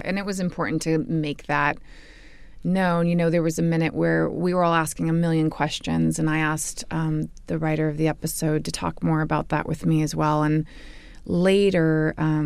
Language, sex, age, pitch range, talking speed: English, female, 20-39, 150-160 Hz, 200 wpm